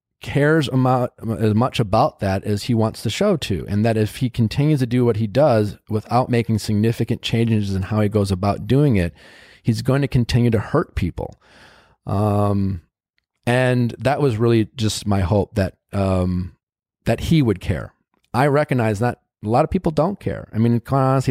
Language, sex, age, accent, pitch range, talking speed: English, male, 30-49, American, 100-125 Hz, 190 wpm